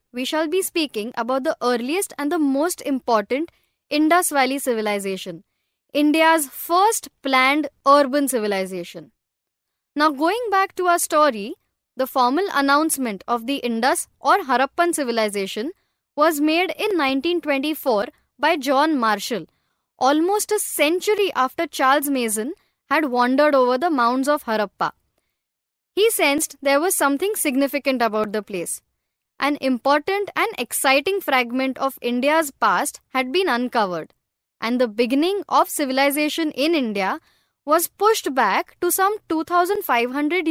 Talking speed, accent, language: 130 wpm, native, Marathi